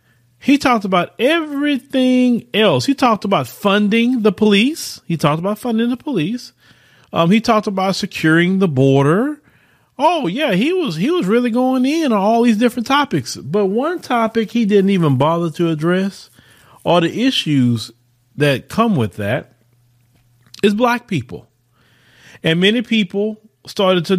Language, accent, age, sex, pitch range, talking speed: English, American, 30-49, male, 150-220 Hz, 150 wpm